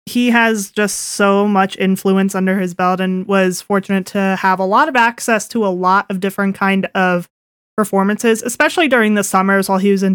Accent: American